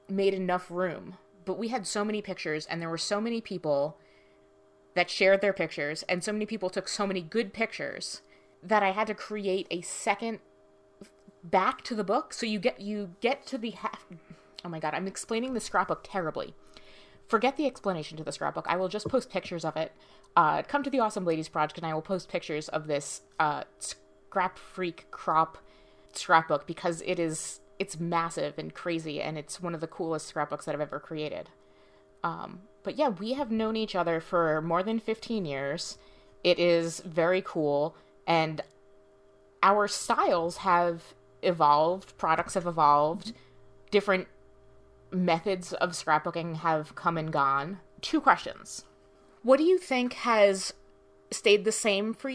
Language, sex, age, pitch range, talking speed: English, female, 20-39, 155-205 Hz, 170 wpm